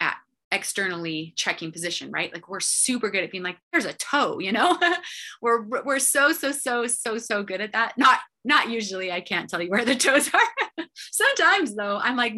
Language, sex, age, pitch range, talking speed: English, female, 30-49, 180-255 Hz, 200 wpm